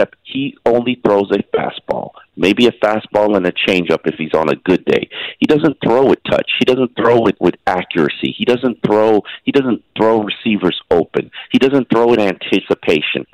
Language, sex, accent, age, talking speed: English, male, American, 50-69, 195 wpm